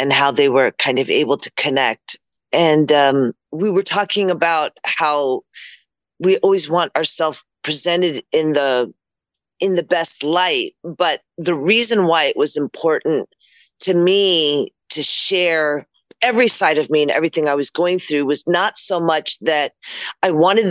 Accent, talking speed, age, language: American, 160 wpm, 40-59, English